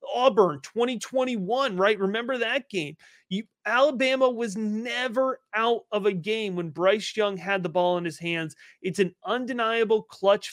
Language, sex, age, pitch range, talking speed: English, male, 30-49, 180-225 Hz, 150 wpm